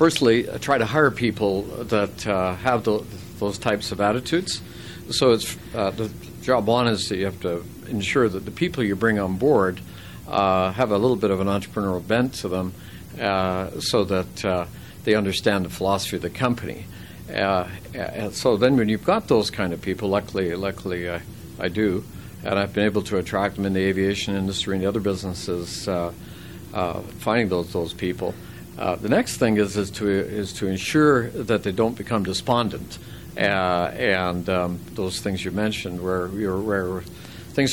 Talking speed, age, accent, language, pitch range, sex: 190 wpm, 50-69, American, English, 95-115 Hz, male